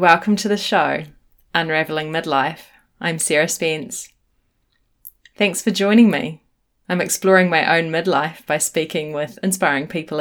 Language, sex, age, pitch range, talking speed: English, female, 20-39, 155-195 Hz, 135 wpm